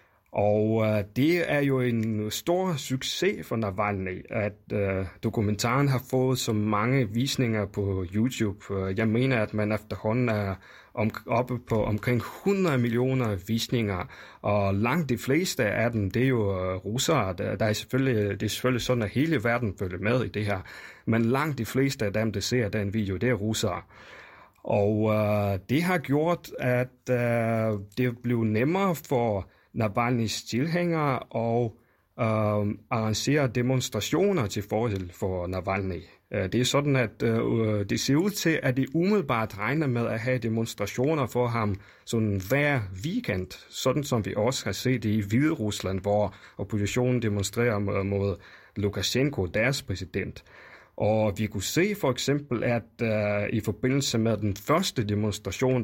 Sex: male